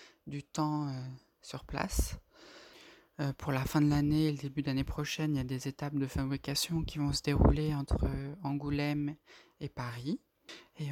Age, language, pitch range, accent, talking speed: 20-39, French, 140-155 Hz, French, 165 wpm